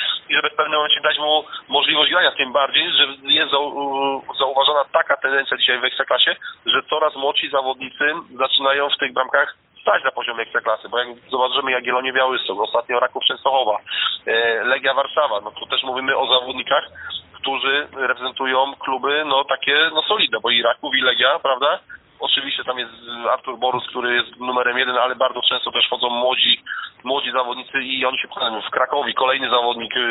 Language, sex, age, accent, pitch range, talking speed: Polish, male, 40-59, native, 125-145 Hz, 170 wpm